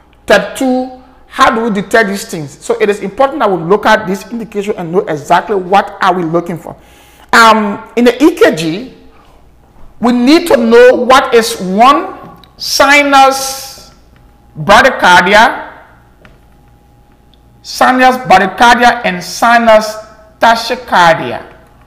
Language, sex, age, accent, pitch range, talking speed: English, male, 50-69, Nigerian, 195-245 Hz, 120 wpm